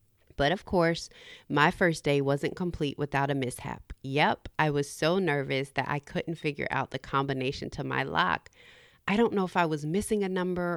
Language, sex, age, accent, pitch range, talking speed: English, female, 30-49, American, 145-190 Hz, 195 wpm